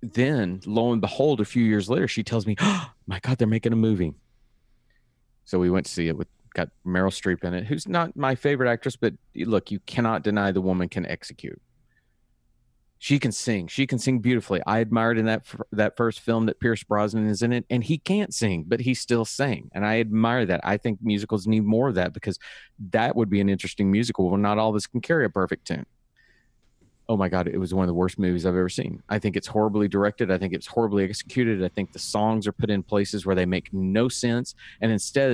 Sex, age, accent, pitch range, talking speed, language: male, 40-59, American, 95-120 Hz, 235 wpm, English